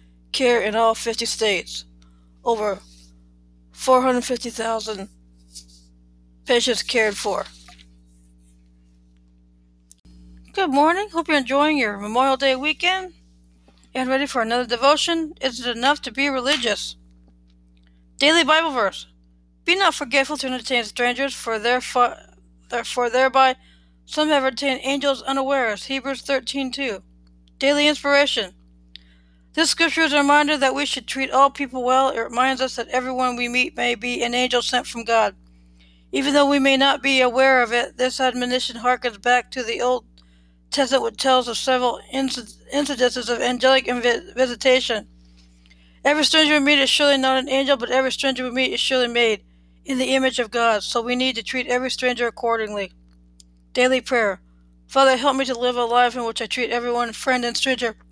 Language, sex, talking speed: English, female, 155 wpm